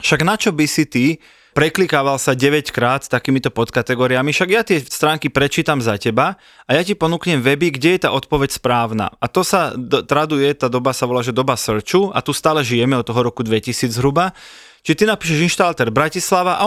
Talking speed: 200 wpm